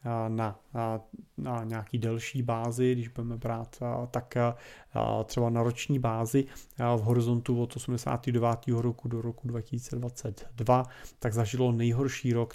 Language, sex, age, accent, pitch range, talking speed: Czech, male, 30-49, native, 115-140 Hz, 125 wpm